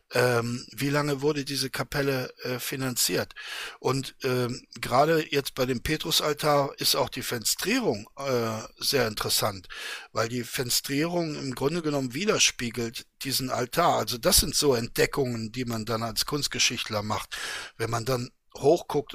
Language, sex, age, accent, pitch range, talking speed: German, male, 60-79, German, 125-150 Hz, 140 wpm